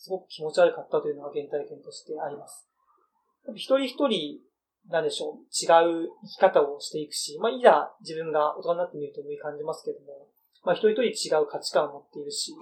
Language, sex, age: Japanese, male, 30-49